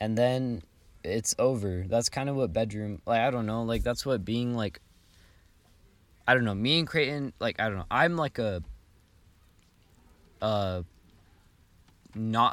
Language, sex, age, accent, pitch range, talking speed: English, male, 20-39, American, 90-110 Hz, 160 wpm